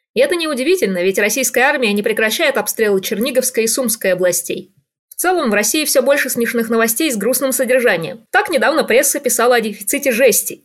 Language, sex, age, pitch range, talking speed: Russian, female, 20-39, 205-270 Hz, 175 wpm